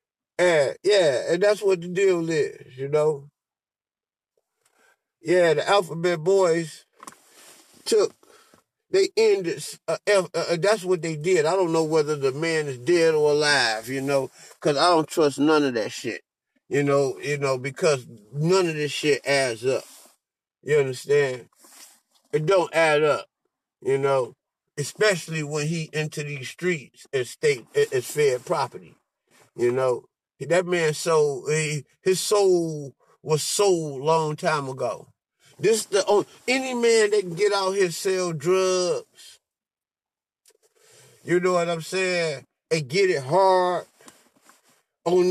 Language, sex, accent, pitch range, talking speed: English, male, American, 150-190 Hz, 145 wpm